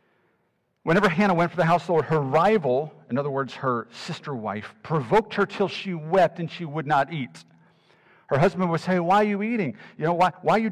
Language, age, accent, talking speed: English, 50-69, American, 220 wpm